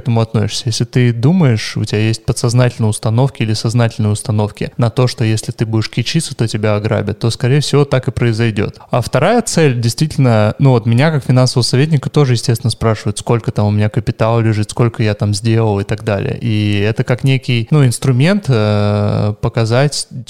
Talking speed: 185 wpm